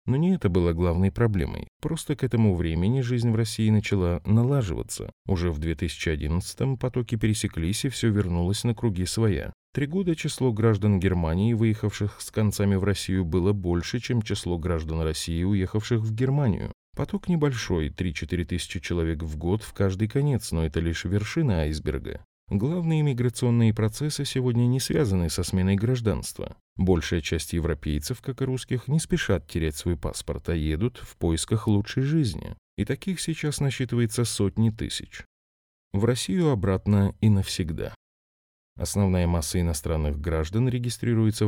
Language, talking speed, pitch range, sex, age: Russian, 150 wpm, 85-120 Hz, male, 30-49